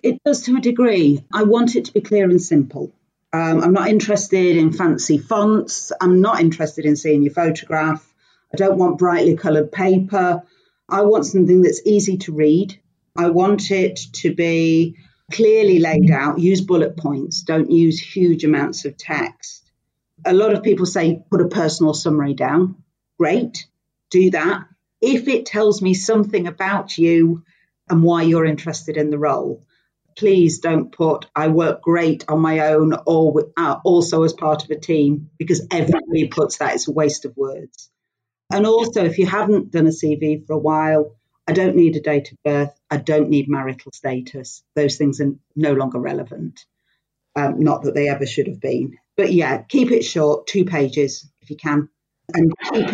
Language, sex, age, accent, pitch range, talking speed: English, female, 40-59, British, 150-185 Hz, 180 wpm